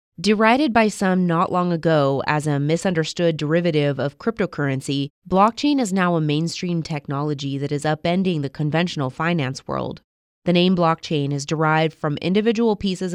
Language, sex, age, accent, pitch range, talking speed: English, female, 20-39, American, 150-180 Hz, 150 wpm